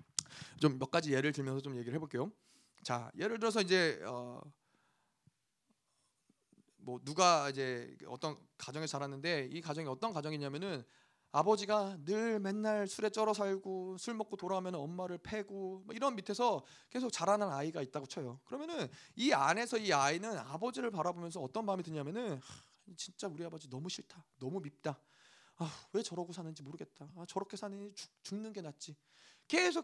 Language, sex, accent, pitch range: Korean, male, native, 155-235 Hz